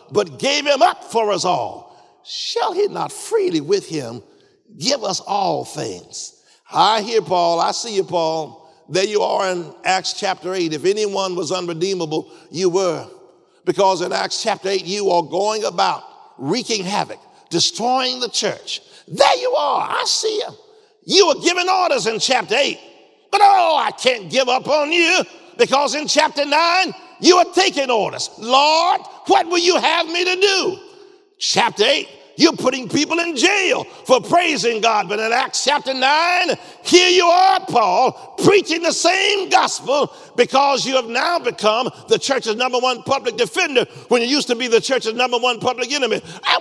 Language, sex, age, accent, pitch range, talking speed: English, male, 50-69, American, 220-370 Hz, 175 wpm